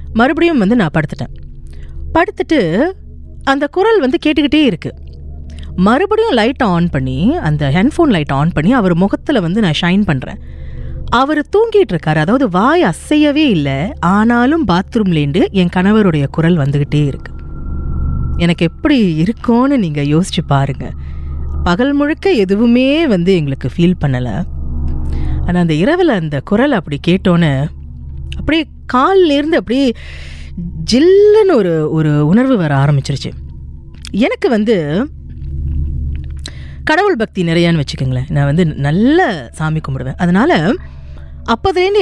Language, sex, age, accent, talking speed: Tamil, female, 30-49, native, 115 wpm